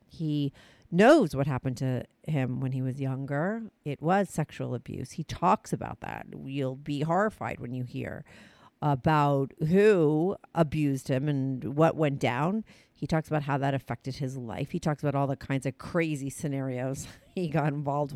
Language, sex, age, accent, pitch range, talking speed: English, female, 50-69, American, 135-170 Hz, 170 wpm